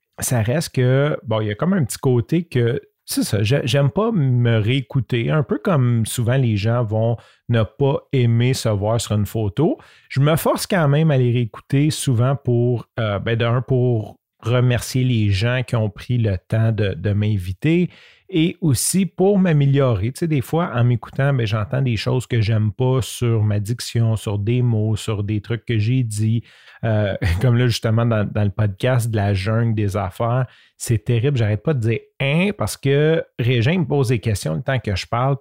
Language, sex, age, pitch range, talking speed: French, male, 40-59, 110-135 Hz, 205 wpm